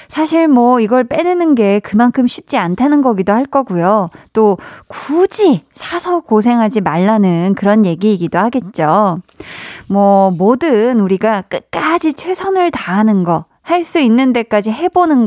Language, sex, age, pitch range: Korean, female, 20-39, 190-285 Hz